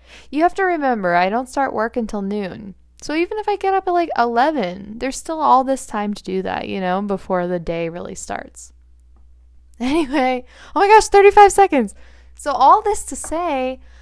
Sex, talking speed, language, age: female, 195 wpm, English, 10-29